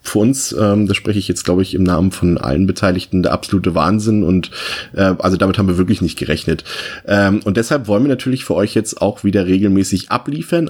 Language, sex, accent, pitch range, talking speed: German, male, German, 100-120 Hz, 220 wpm